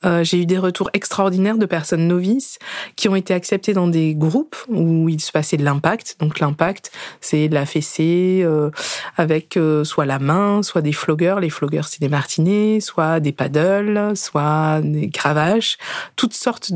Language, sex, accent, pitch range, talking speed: French, female, French, 155-195 Hz, 180 wpm